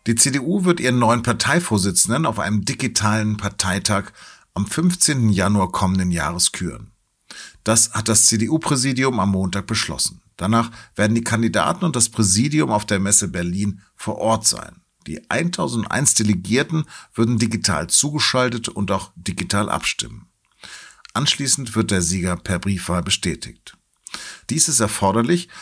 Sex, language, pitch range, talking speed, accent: male, German, 95-120 Hz, 135 wpm, German